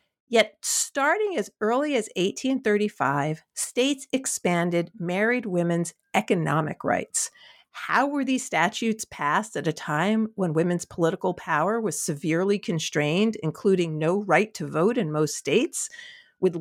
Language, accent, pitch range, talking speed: English, American, 165-250 Hz, 130 wpm